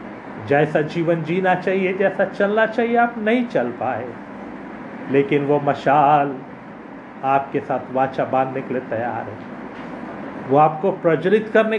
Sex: male